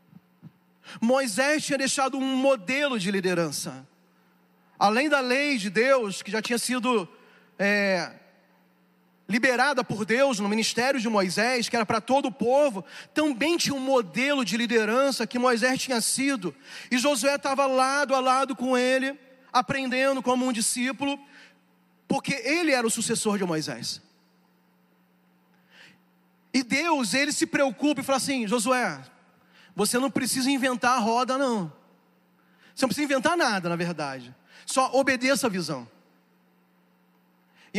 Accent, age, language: Brazilian, 40-59, Portuguese